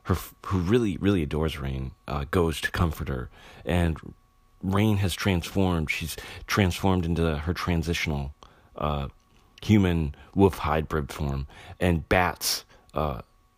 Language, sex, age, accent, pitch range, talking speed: English, male, 40-59, American, 80-95 Hz, 125 wpm